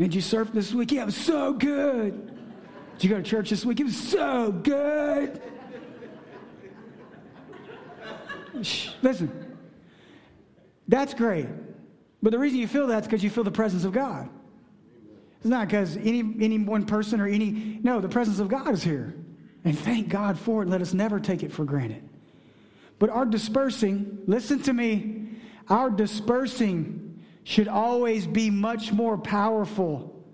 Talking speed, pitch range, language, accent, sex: 160 wpm, 215-280 Hz, English, American, male